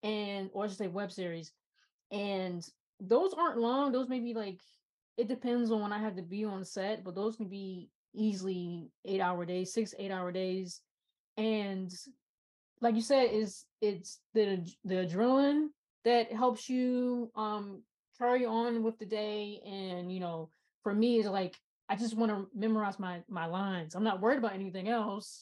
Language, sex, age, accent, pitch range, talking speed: English, female, 20-39, American, 195-240 Hz, 180 wpm